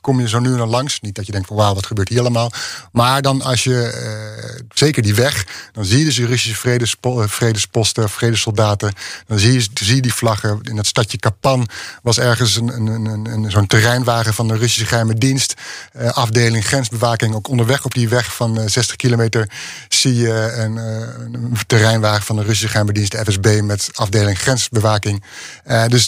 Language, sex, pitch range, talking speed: Dutch, male, 110-130 Hz, 200 wpm